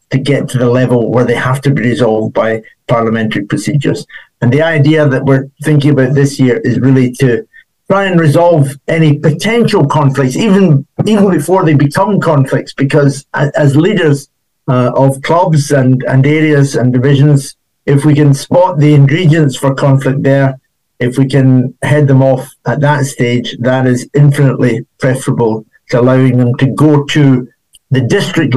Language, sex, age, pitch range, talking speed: English, male, 50-69, 130-150 Hz, 170 wpm